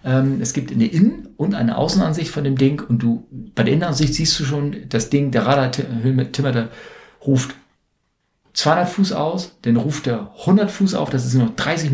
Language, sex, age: German, male, 50-69